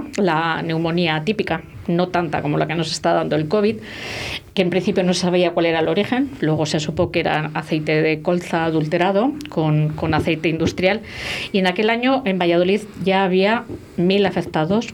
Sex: female